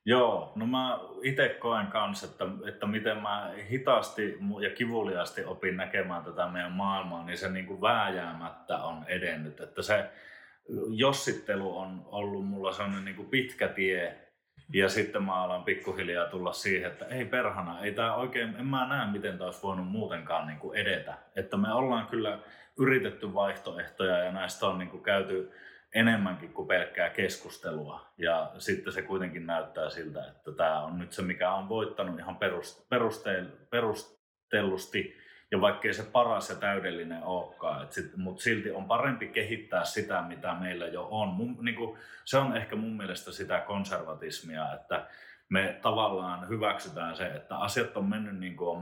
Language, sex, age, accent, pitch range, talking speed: Finnish, male, 30-49, native, 90-110 Hz, 150 wpm